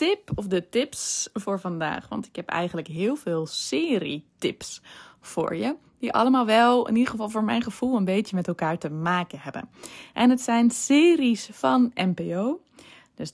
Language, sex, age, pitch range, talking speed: Dutch, female, 20-39, 175-255 Hz, 175 wpm